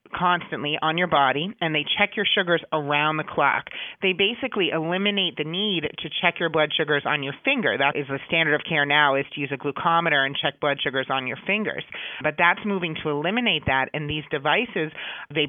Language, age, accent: English, 30-49, American